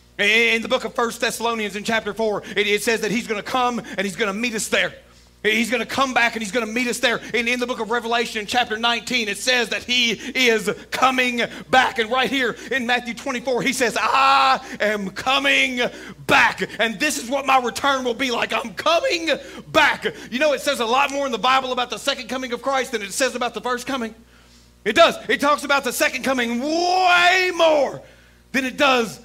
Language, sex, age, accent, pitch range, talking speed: English, male, 40-59, American, 220-275 Hz, 230 wpm